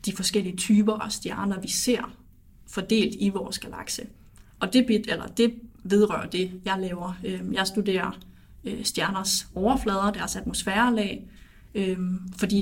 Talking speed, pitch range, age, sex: 115 wpm, 185-210 Hz, 30-49, female